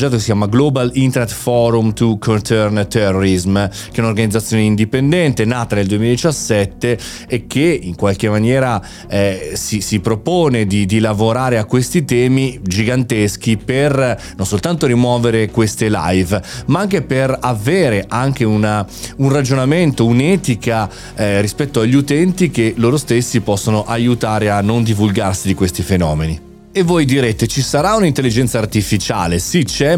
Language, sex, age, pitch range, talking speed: Italian, male, 30-49, 100-125 Hz, 140 wpm